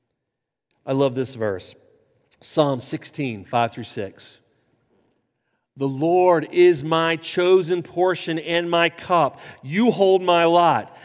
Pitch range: 135-200 Hz